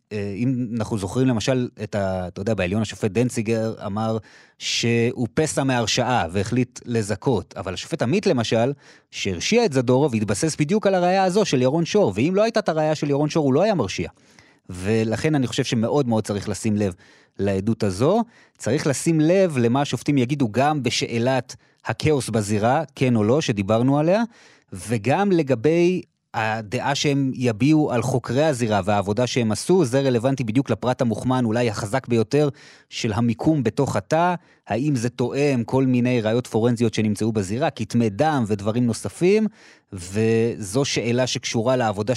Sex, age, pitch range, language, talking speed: male, 30-49, 110-145 Hz, Hebrew, 155 wpm